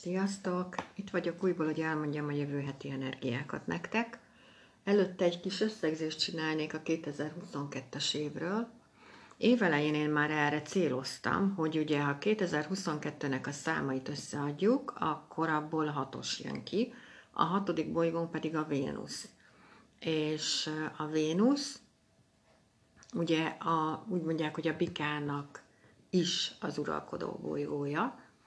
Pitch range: 150-200 Hz